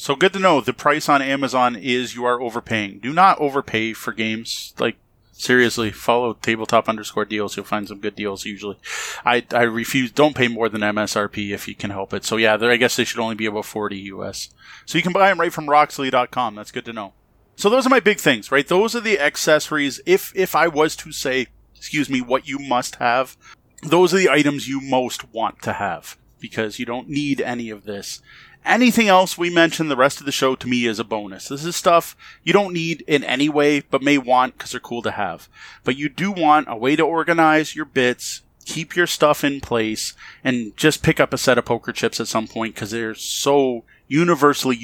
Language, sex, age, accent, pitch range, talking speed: English, male, 30-49, American, 115-155 Hz, 225 wpm